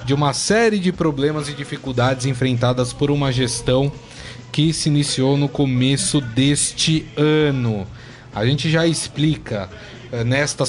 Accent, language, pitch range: Brazilian, Portuguese, 130-155 Hz